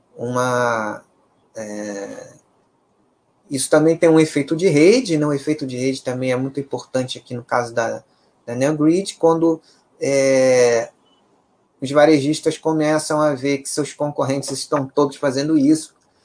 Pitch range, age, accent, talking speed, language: 130-155 Hz, 20-39, Brazilian, 140 wpm, Portuguese